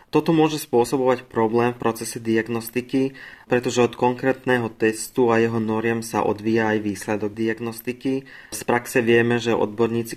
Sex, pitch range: male, 105-115 Hz